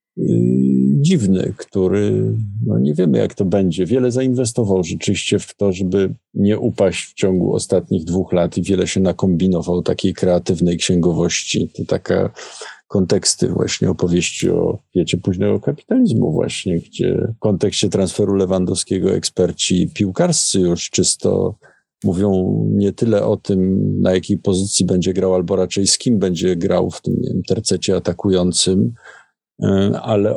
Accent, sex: native, male